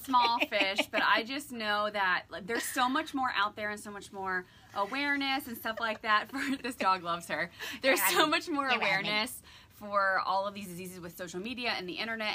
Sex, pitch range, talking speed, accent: female, 180-225 Hz, 215 wpm, American